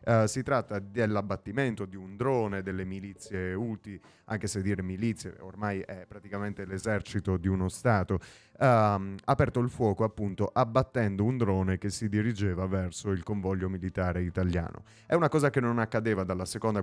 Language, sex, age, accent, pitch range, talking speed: Italian, male, 30-49, native, 90-110 Hz, 155 wpm